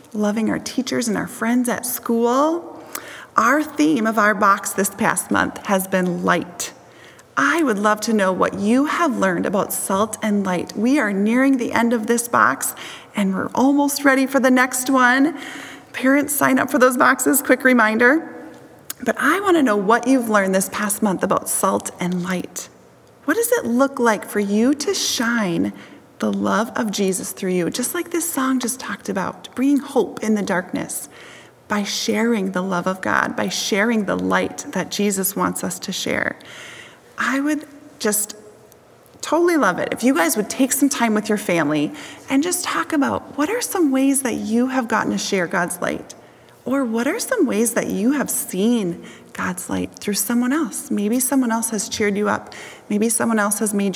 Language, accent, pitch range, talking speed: English, American, 200-270 Hz, 190 wpm